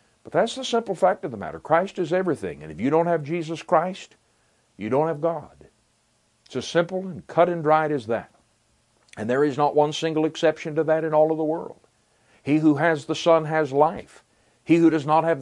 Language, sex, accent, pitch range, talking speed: English, male, American, 115-160 Hz, 220 wpm